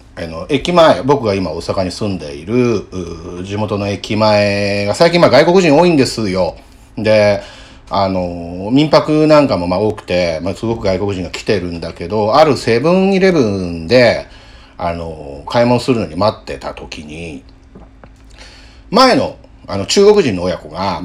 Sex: male